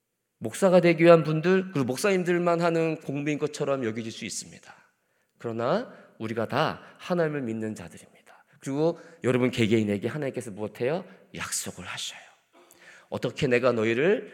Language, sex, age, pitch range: Korean, male, 40-59, 140-205 Hz